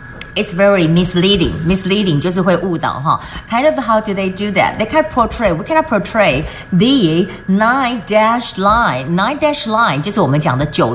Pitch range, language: 150-195 Hz, Chinese